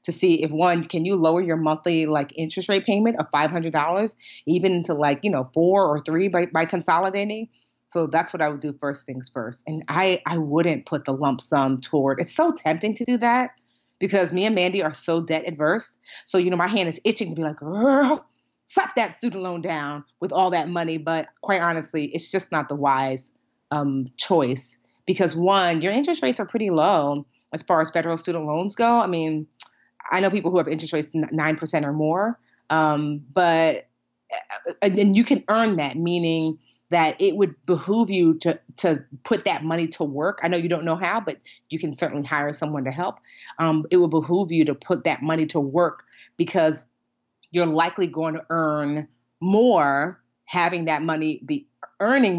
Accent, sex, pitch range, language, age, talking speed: American, female, 155-185 Hz, English, 30-49, 200 wpm